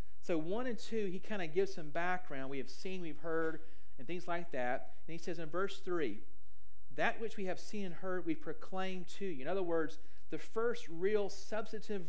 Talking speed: 215 wpm